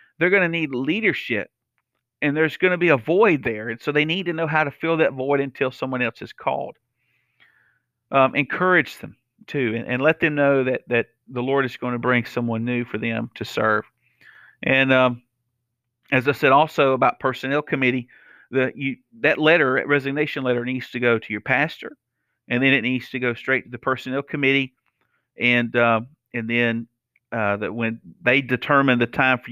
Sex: male